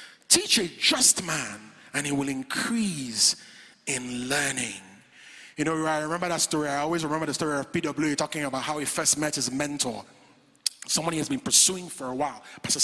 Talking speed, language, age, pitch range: 190 wpm, English, 30-49, 150-225 Hz